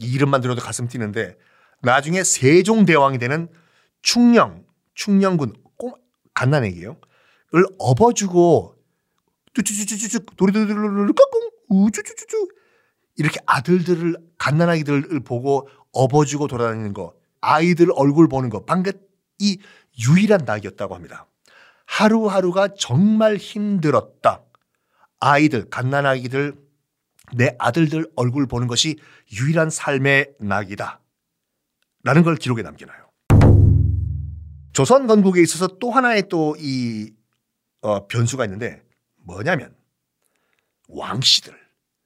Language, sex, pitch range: Korean, male, 125-200 Hz